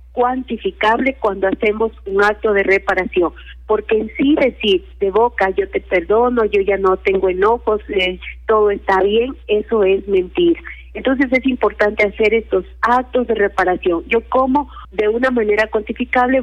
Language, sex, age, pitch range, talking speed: Spanish, female, 40-59, 205-245 Hz, 150 wpm